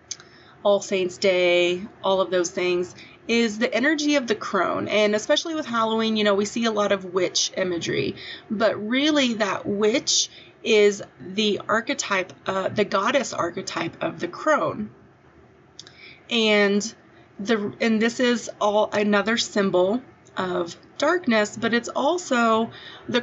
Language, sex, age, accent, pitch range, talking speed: English, female, 30-49, American, 190-230 Hz, 140 wpm